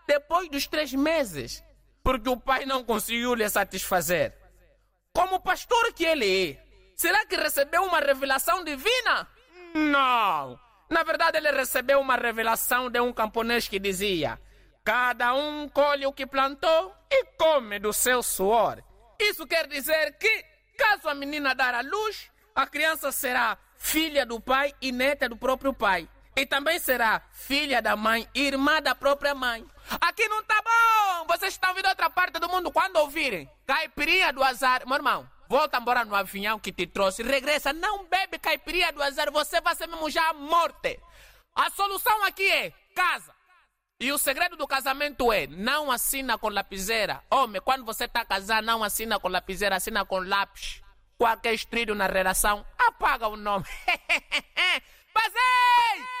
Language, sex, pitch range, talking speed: Portuguese, male, 235-335 Hz, 160 wpm